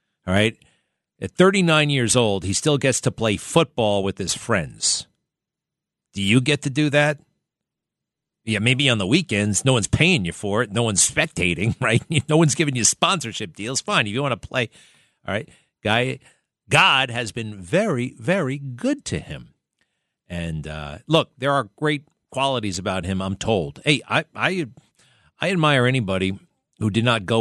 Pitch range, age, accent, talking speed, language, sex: 95-125 Hz, 50-69, American, 175 wpm, English, male